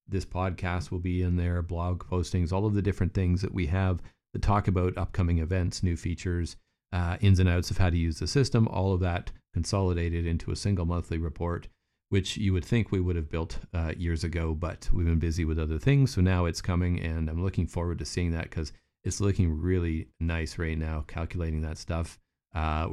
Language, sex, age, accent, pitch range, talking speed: English, male, 40-59, American, 80-90 Hz, 215 wpm